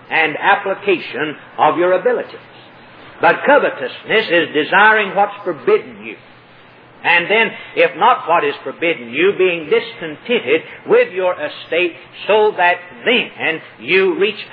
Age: 50-69